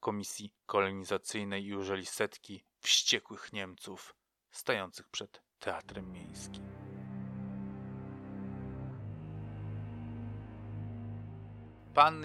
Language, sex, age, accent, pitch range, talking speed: Polish, male, 30-49, native, 100-140 Hz, 60 wpm